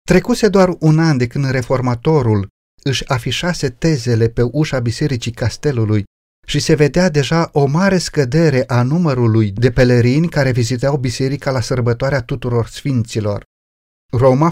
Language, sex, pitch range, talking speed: Romanian, male, 120-155 Hz, 135 wpm